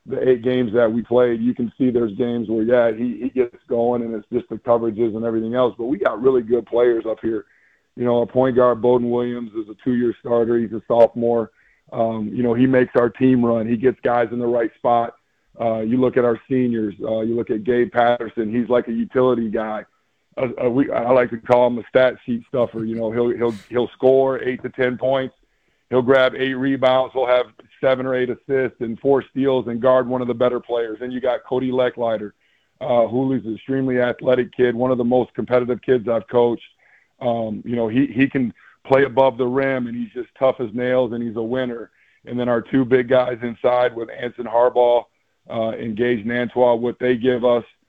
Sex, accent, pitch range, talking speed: male, American, 115-130 Hz, 225 wpm